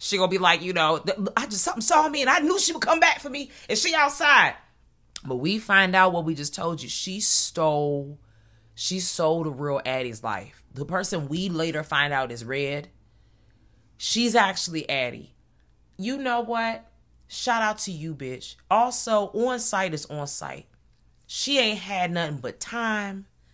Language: English